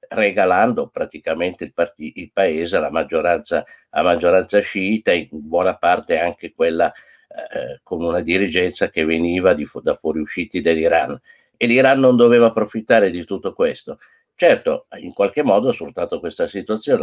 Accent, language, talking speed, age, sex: native, Italian, 155 wpm, 50-69, male